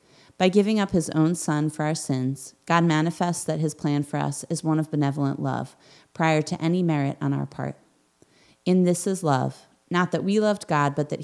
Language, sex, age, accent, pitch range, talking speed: English, female, 30-49, American, 145-175 Hz, 210 wpm